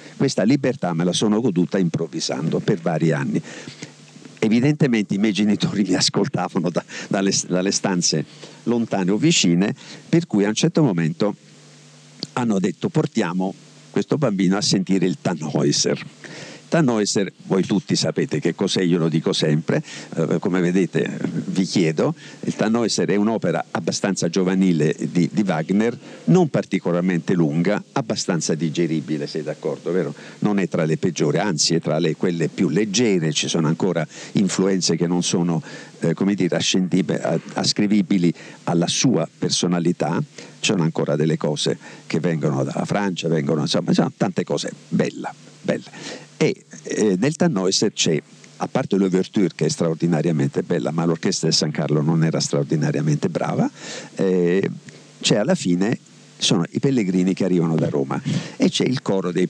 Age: 50-69